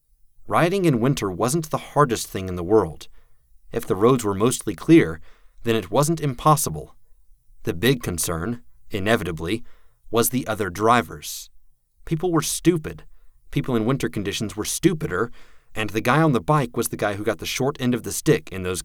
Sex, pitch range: male, 85-125 Hz